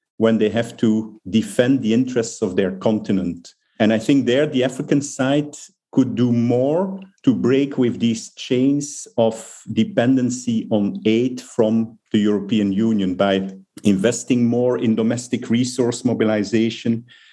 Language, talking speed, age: English, 140 wpm, 50-69